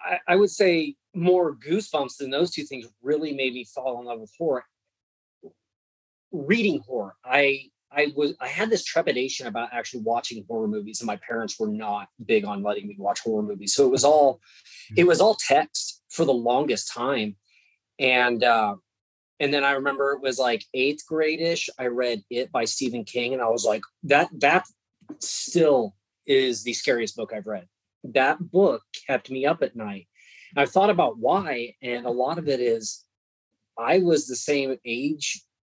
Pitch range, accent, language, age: 110-150 Hz, American, English, 30-49